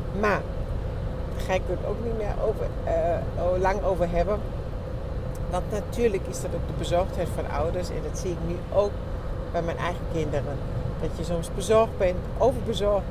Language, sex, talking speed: English, female, 180 wpm